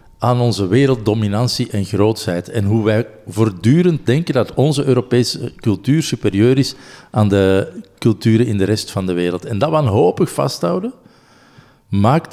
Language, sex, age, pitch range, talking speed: Dutch, male, 50-69, 110-145 Hz, 145 wpm